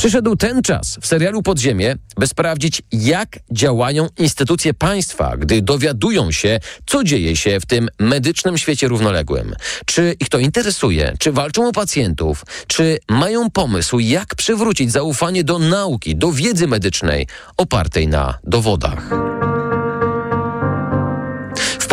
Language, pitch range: Polish, 115-170 Hz